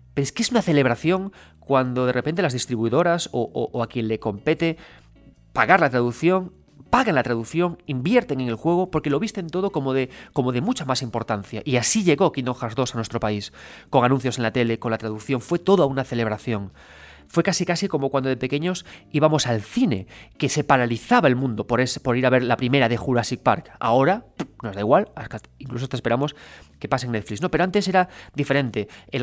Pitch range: 115-155 Hz